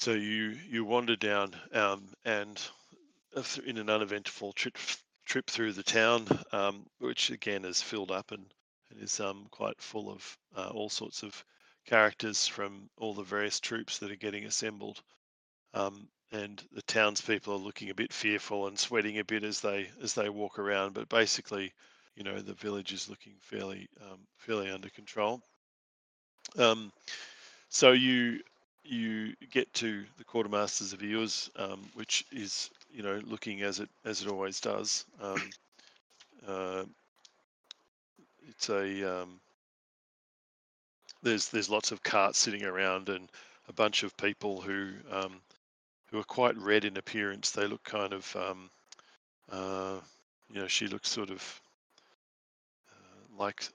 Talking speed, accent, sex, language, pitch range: 150 wpm, Australian, male, English, 95-110 Hz